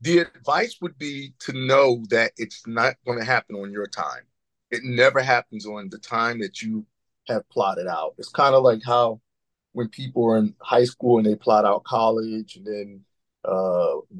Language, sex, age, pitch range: English, male, 40-59, 105-140 Hz